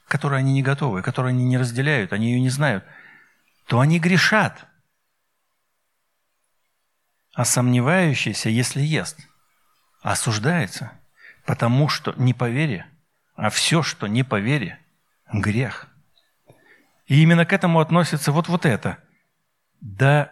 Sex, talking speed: male, 110 wpm